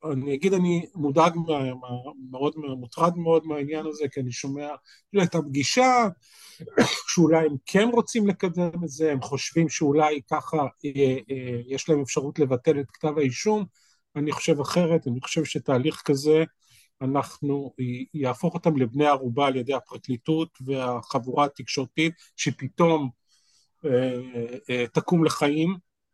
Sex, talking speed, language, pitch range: male, 120 wpm, Hebrew, 135-170 Hz